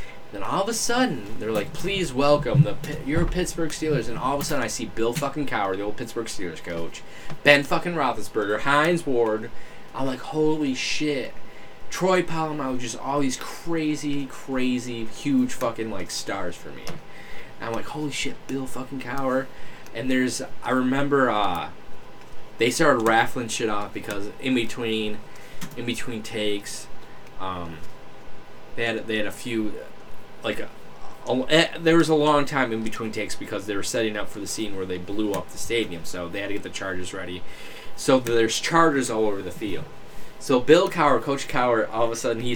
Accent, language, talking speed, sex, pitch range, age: American, English, 190 wpm, male, 105-145 Hz, 10-29